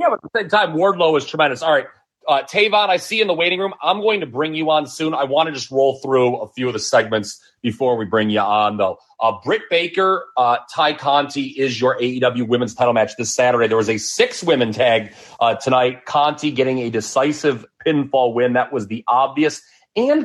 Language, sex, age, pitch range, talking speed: English, male, 30-49, 115-150 Hz, 230 wpm